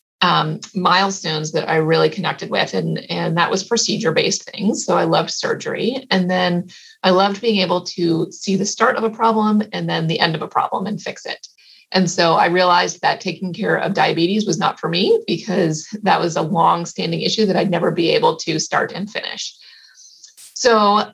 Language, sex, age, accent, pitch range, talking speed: English, female, 30-49, American, 165-205 Hz, 200 wpm